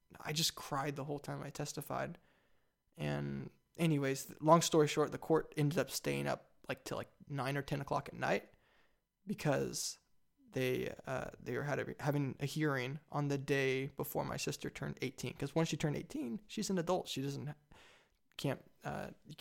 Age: 20-39